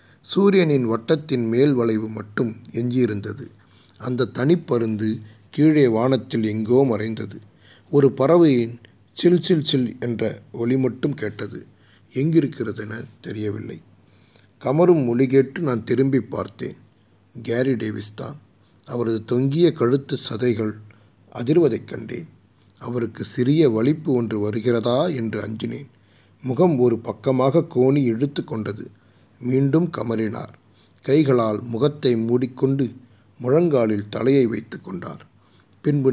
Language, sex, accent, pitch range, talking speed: Tamil, male, native, 110-135 Hz, 95 wpm